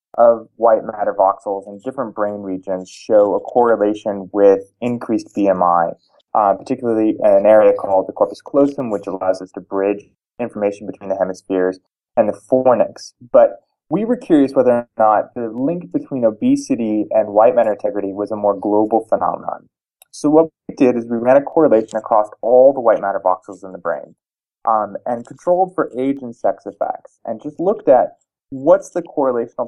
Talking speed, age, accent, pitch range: 180 wpm, 20-39, American, 100-150 Hz